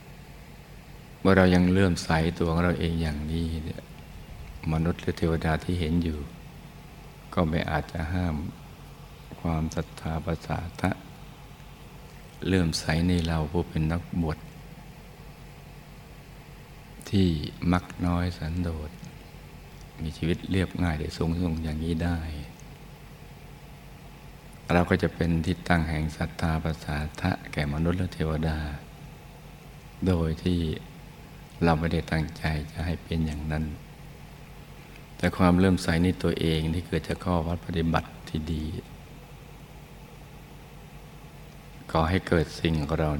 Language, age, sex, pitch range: Thai, 60-79, male, 80-95 Hz